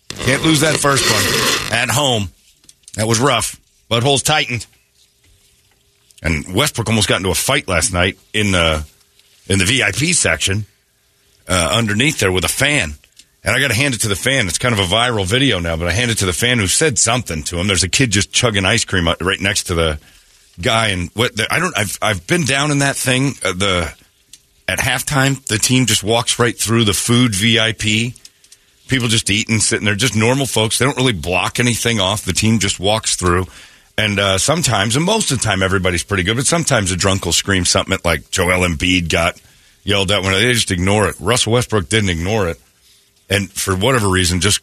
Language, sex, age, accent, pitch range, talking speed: English, male, 40-59, American, 95-125 Hz, 215 wpm